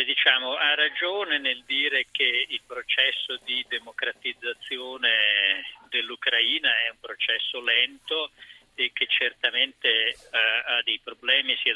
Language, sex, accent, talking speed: Italian, male, native, 115 wpm